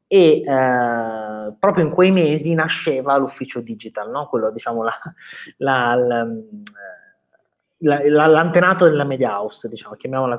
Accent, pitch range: native, 120-155 Hz